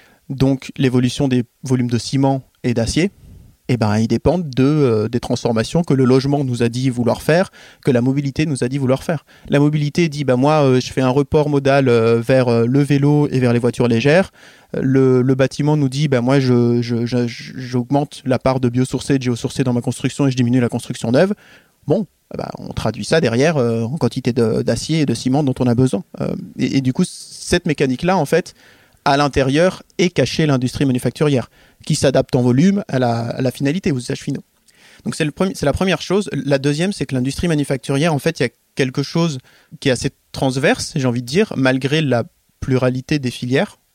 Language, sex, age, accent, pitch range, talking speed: French, male, 20-39, French, 125-145 Hz, 220 wpm